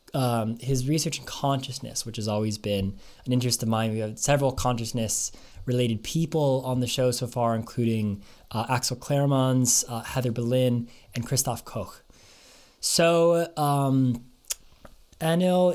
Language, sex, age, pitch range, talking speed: English, male, 20-39, 115-145 Hz, 135 wpm